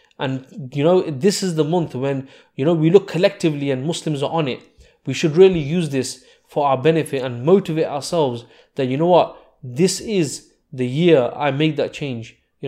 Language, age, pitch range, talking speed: English, 20-39, 130-160 Hz, 200 wpm